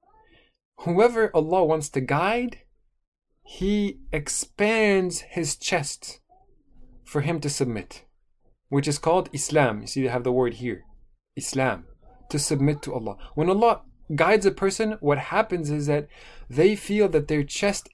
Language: English